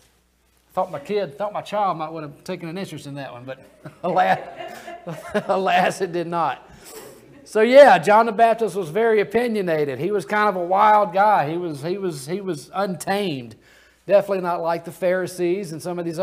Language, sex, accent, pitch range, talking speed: English, male, American, 135-185 Hz, 190 wpm